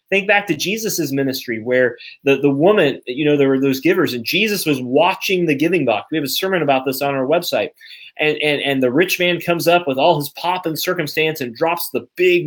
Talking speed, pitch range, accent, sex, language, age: 235 wpm, 135-170 Hz, American, male, English, 30-49